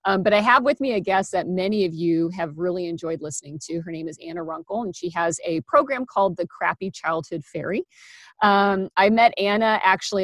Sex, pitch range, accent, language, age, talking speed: female, 165-190 Hz, American, English, 40-59, 215 wpm